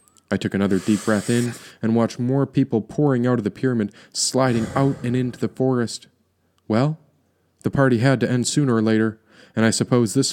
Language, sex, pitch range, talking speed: English, male, 105-135 Hz, 200 wpm